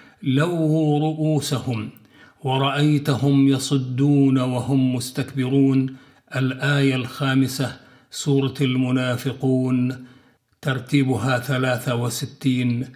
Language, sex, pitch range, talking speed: Arabic, male, 130-145 Hz, 60 wpm